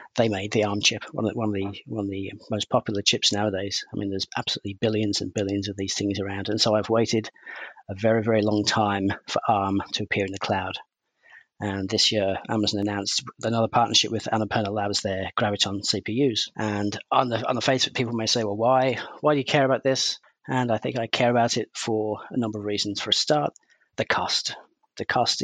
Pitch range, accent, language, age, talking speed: 100-115 Hz, British, English, 40-59, 220 wpm